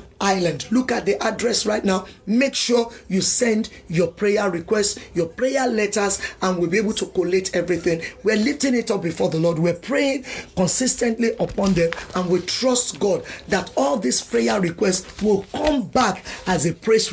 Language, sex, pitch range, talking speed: English, male, 180-230 Hz, 180 wpm